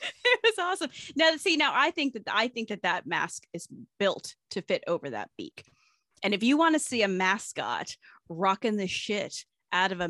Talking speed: 210 wpm